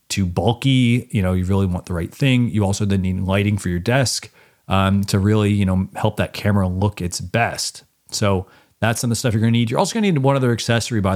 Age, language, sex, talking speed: 30-49, English, male, 260 wpm